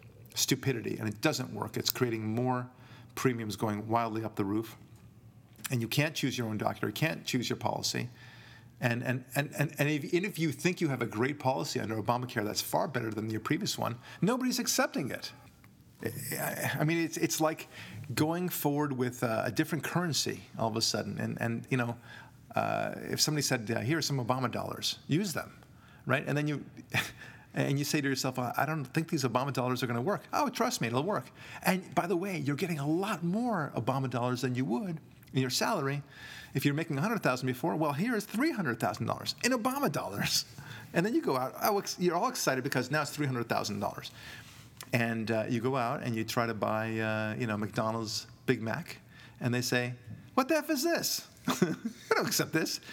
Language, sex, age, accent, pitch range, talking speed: English, male, 40-59, American, 120-160 Hz, 200 wpm